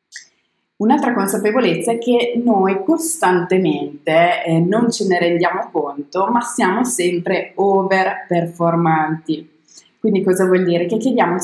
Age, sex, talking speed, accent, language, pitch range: 20-39, female, 120 wpm, native, Italian, 160-195 Hz